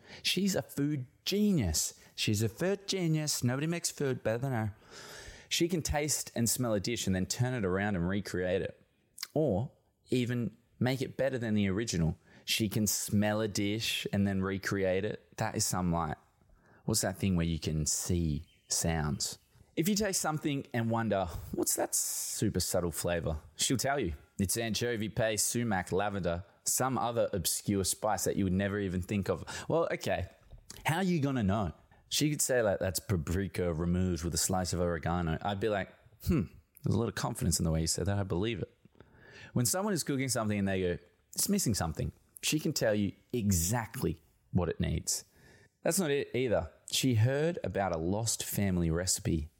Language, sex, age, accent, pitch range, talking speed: English, male, 20-39, Australian, 90-125 Hz, 190 wpm